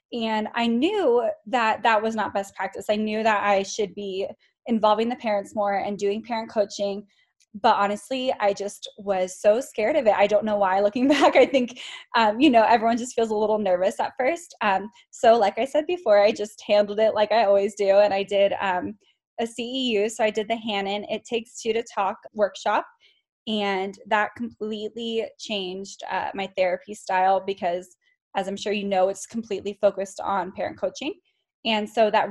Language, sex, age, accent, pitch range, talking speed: English, female, 10-29, American, 195-235 Hz, 195 wpm